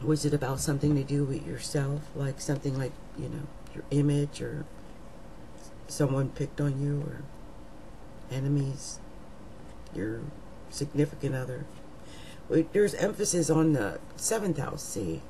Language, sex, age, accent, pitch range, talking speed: English, female, 50-69, American, 135-160 Hz, 125 wpm